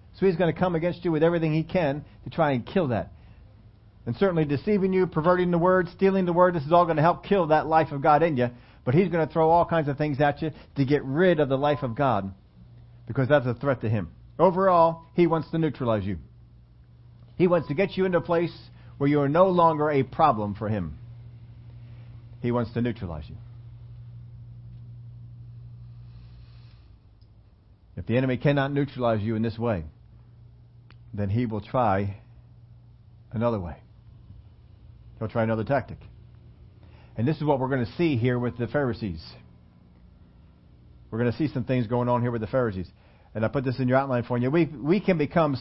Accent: American